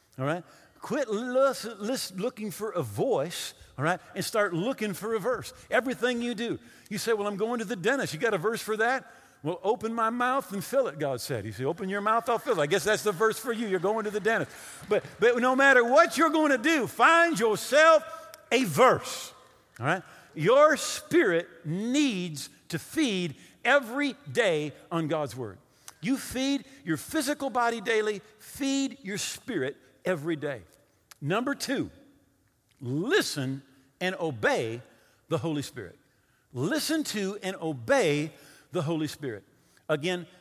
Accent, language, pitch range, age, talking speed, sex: American, English, 150-240 Hz, 50-69, 170 wpm, male